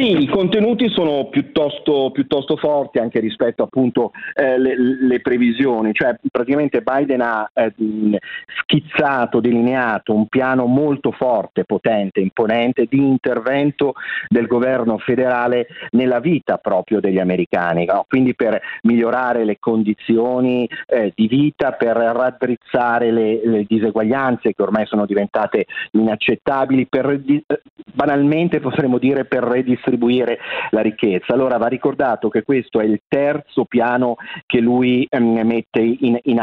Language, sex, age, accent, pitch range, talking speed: Italian, male, 40-59, native, 110-135 Hz, 130 wpm